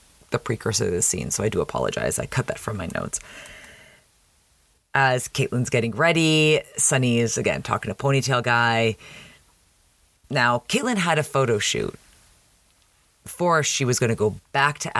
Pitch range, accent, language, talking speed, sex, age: 110-140 Hz, American, English, 160 wpm, female, 30-49